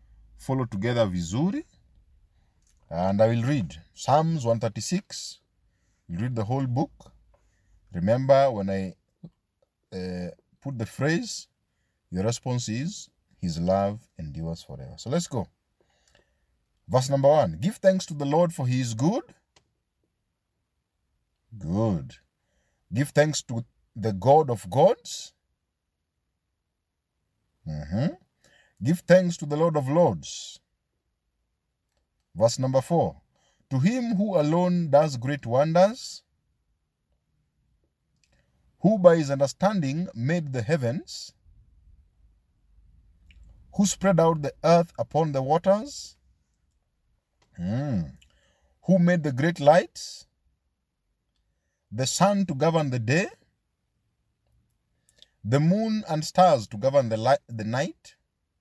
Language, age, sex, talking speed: English, 50-69, male, 110 wpm